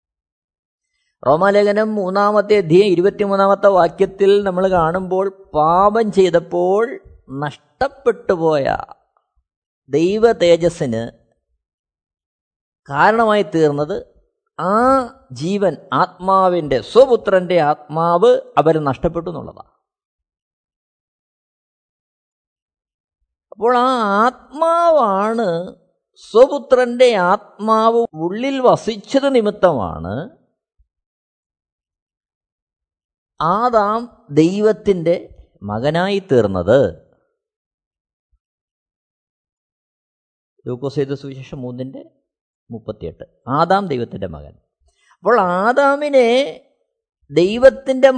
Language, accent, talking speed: Malayalam, native, 55 wpm